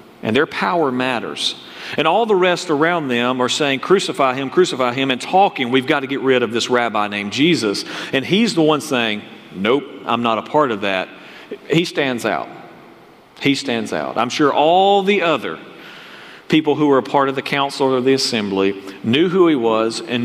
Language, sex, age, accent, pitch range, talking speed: English, male, 40-59, American, 115-150 Hz, 200 wpm